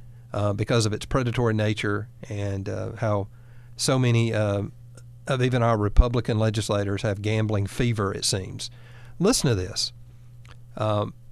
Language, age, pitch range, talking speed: English, 40-59, 110-125 Hz, 140 wpm